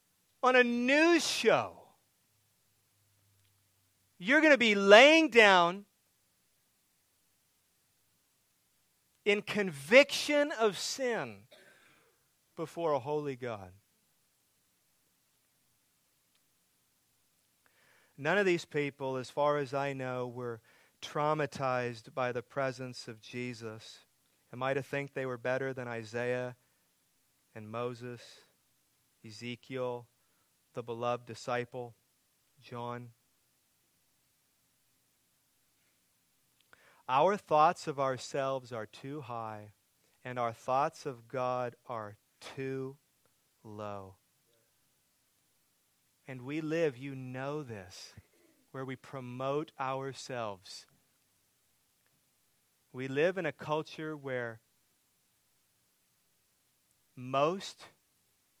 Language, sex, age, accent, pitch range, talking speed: English, male, 40-59, American, 120-150 Hz, 85 wpm